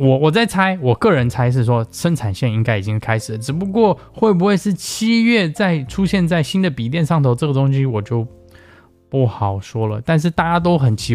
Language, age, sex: Chinese, 20-39, male